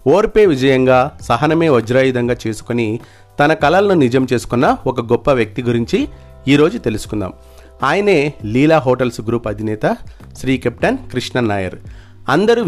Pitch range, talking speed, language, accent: 105-140 Hz, 115 wpm, Telugu, native